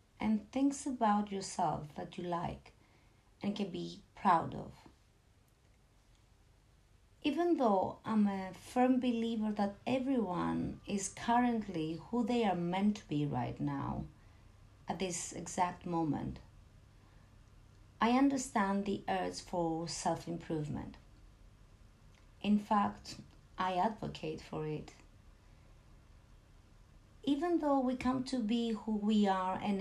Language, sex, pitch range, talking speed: English, female, 140-220 Hz, 115 wpm